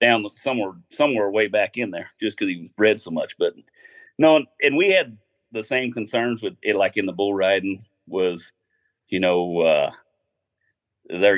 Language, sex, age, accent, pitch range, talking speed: English, male, 40-59, American, 95-125 Hz, 180 wpm